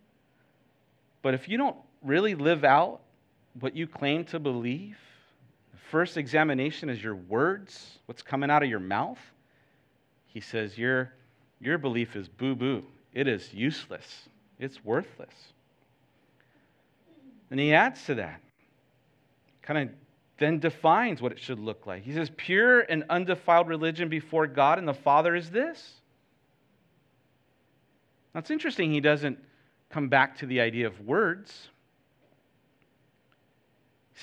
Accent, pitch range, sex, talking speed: American, 125-155 Hz, male, 130 wpm